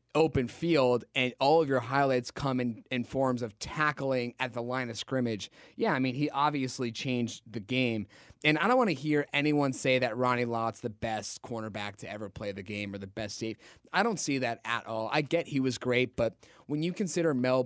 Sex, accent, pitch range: male, American, 115-140 Hz